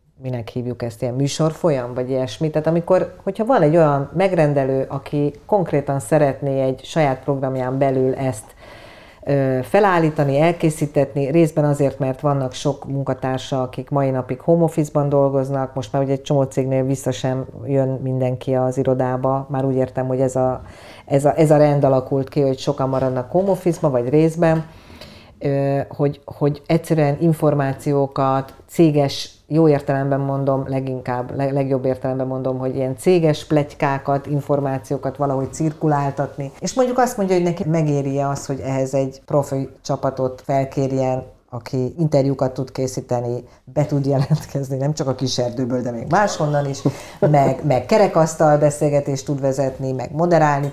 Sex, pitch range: female, 130-150 Hz